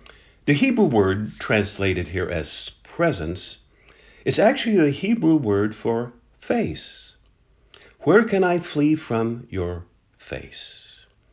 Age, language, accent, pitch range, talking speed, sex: 50-69, English, American, 95-140 Hz, 110 wpm, male